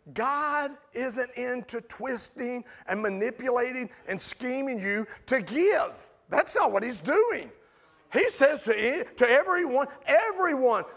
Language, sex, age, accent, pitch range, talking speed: English, male, 40-59, American, 235-285 Hz, 120 wpm